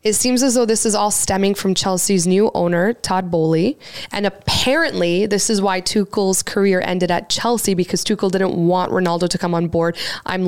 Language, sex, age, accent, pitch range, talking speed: English, female, 20-39, American, 190-245 Hz, 195 wpm